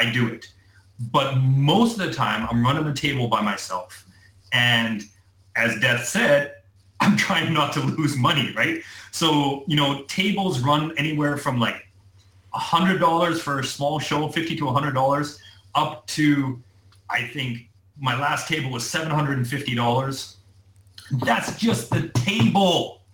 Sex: male